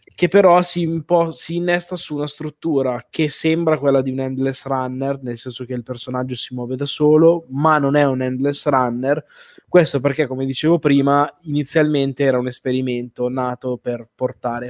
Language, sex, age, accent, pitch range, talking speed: Italian, male, 20-39, native, 115-140 Hz, 170 wpm